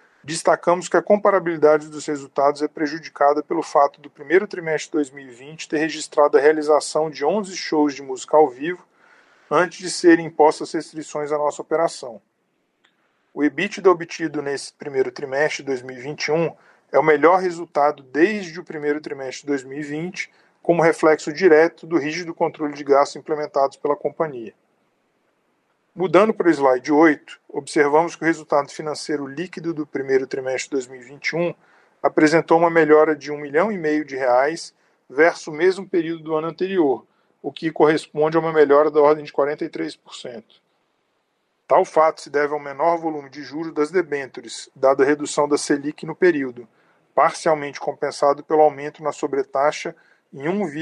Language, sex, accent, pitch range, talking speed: Portuguese, male, Brazilian, 145-165 Hz, 155 wpm